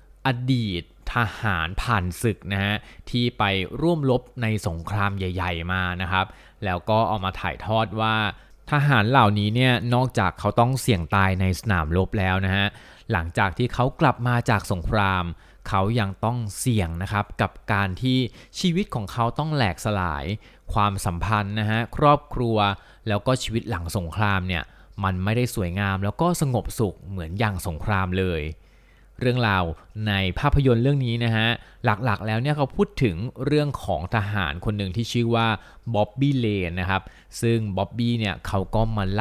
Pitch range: 95-120 Hz